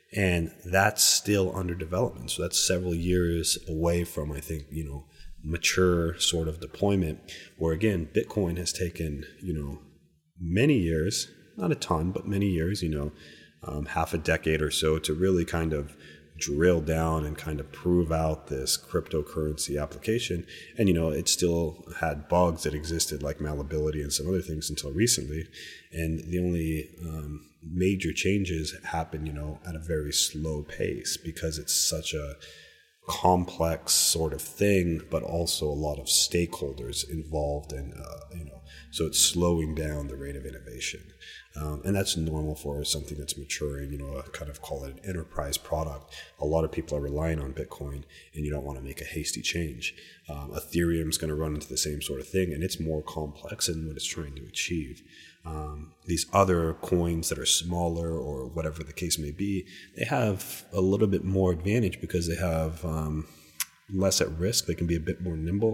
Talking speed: 185 wpm